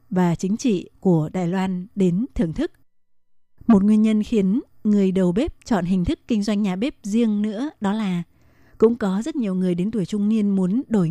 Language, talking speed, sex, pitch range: Vietnamese, 205 wpm, female, 185-225 Hz